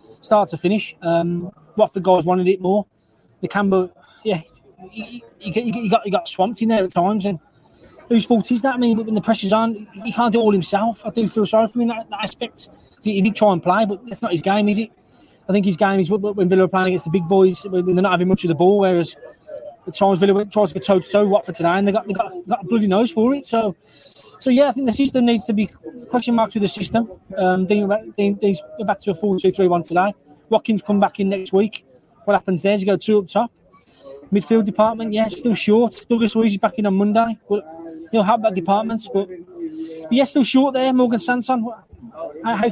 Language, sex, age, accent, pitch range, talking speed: English, male, 20-39, British, 185-225 Hz, 245 wpm